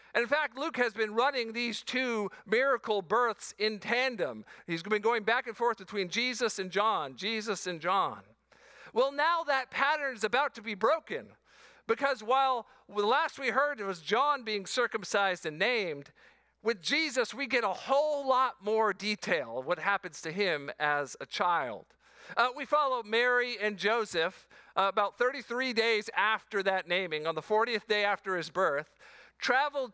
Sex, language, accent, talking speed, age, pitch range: male, English, American, 170 wpm, 50-69, 195-245 Hz